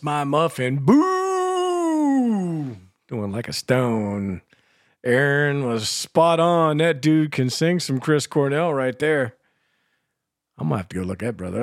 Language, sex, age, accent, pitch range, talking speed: English, male, 50-69, American, 110-150 Hz, 150 wpm